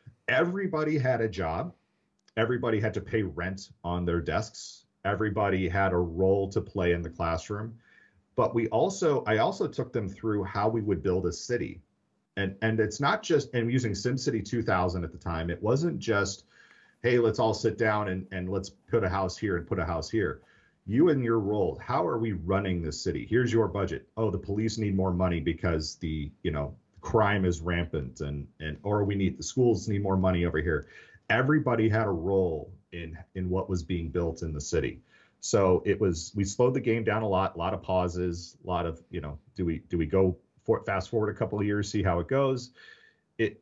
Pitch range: 85-110 Hz